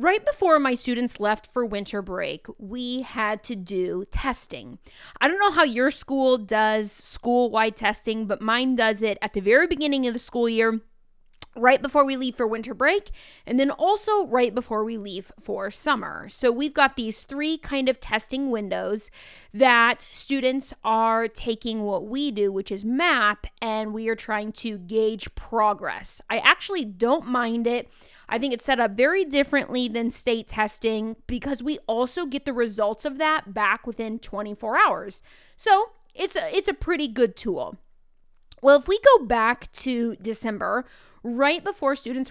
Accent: American